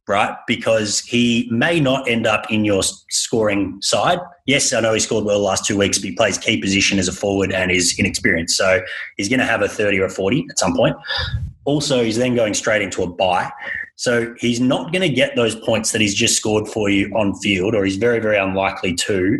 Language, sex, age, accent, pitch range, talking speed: English, male, 30-49, Australian, 100-135 Hz, 230 wpm